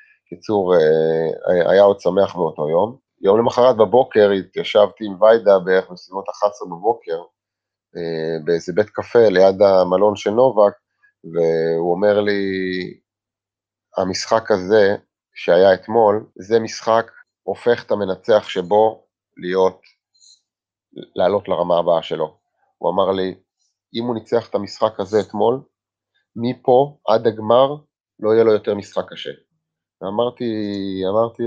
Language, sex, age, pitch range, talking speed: Hebrew, male, 30-49, 100-145 Hz, 120 wpm